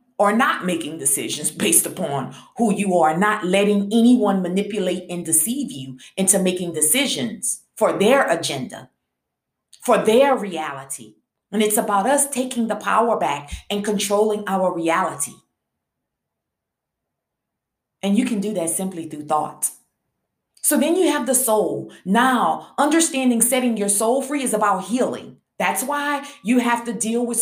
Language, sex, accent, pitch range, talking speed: English, female, American, 185-245 Hz, 145 wpm